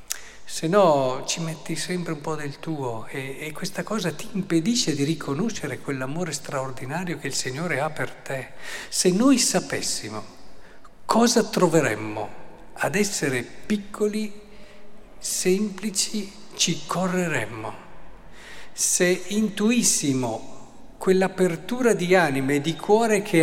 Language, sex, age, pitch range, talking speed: Italian, male, 50-69, 130-185 Hz, 115 wpm